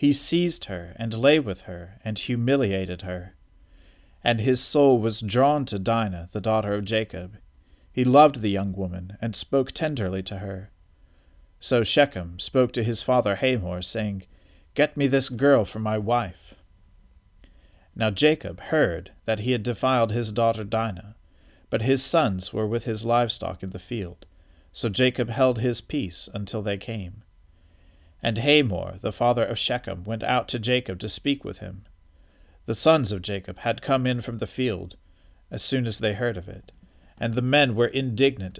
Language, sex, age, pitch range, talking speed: English, male, 40-59, 90-125 Hz, 170 wpm